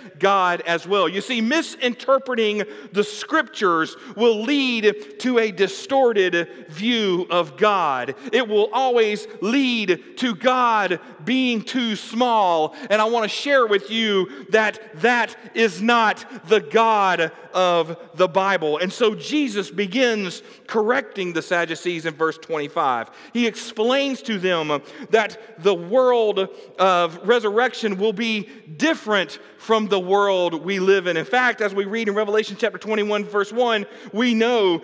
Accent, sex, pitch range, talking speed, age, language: American, male, 190-240 Hz, 140 wpm, 40-59, English